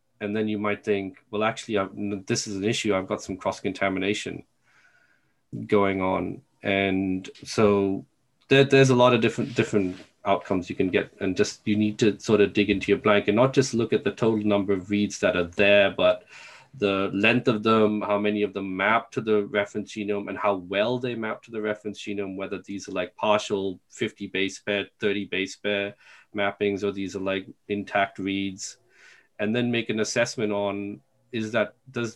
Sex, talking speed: male, 190 wpm